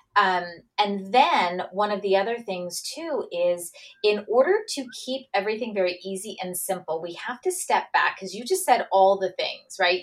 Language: English